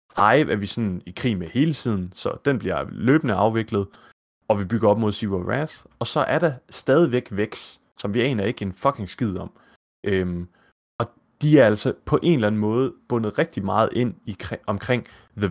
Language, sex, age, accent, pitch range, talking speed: Danish, male, 30-49, native, 95-125 Hz, 200 wpm